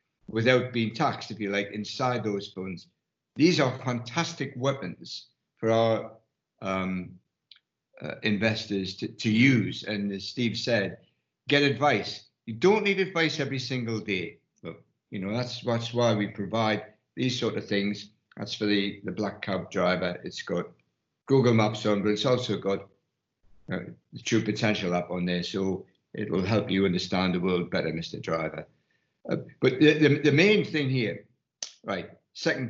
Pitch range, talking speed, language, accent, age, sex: 100-130 Hz, 165 wpm, English, British, 60-79, male